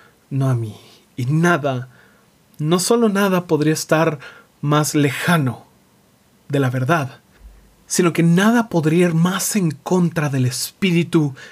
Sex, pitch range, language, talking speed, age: male, 135-185 Hz, Spanish, 130 wpm, 30-49